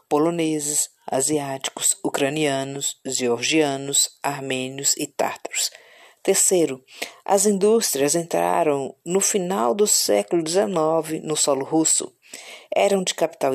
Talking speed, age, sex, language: 95 wpm, 50-69, female, Portuguese